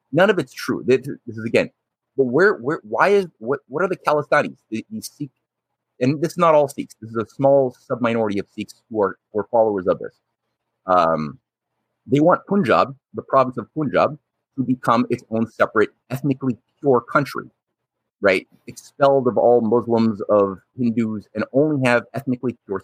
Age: 30-49